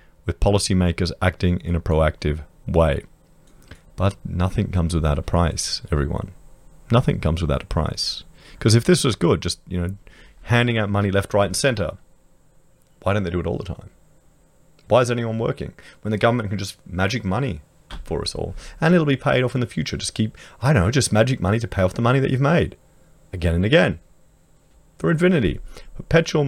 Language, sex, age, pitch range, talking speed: English, male, 30-49, 90-115 Hz, 195 wpm